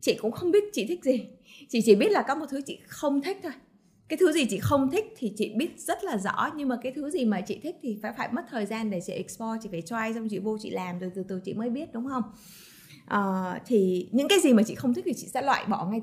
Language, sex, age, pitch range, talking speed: Vietnamese, female, 20-39, 195-255 Hz, 295 wpm